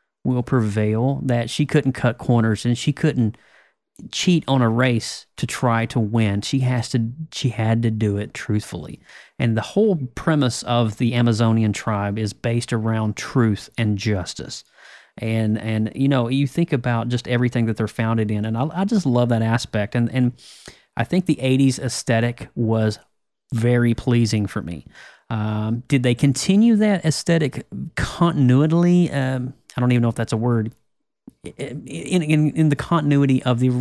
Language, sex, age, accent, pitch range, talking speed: English, male, 30-49, American, 110-135 Hz, 170 wpm